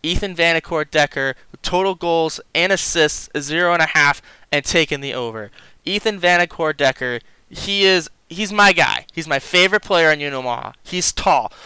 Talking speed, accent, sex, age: 170 wpm, American, male, 20-39